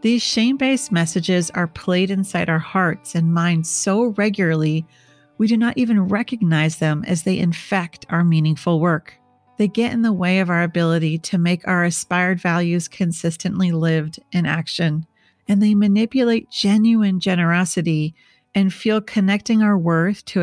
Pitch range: 165-210 Hz